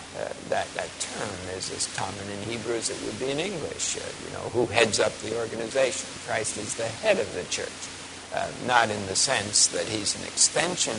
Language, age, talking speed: English, 60-79, 215 wpm